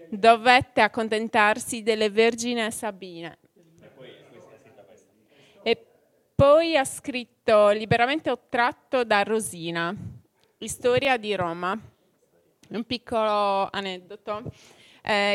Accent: native